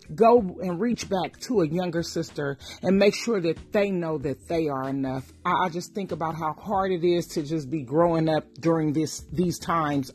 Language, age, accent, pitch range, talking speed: English, 40-59, American, 165-235 Hz, 205 wpm